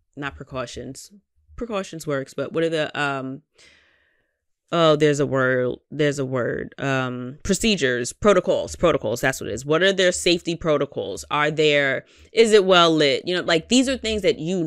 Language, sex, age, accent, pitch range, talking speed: English, female, 20-39, American, 140-190 Hz, 175 wpm